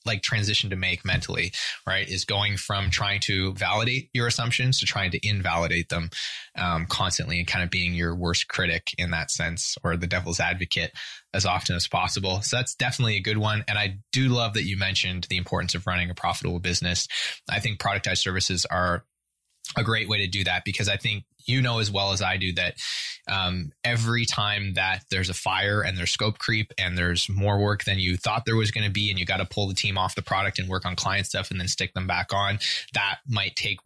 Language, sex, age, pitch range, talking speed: English, male, 20-39, 90-105 Hz, 225 wpm